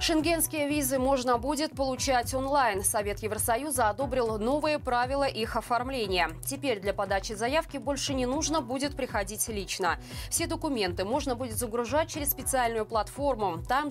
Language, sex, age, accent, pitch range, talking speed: Russian, female, 20-39, native, 200-275 Hz, 140 wpm